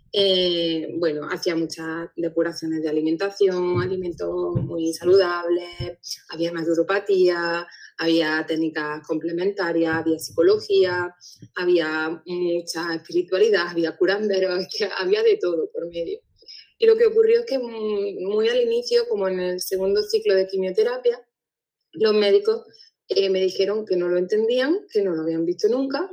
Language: Spanish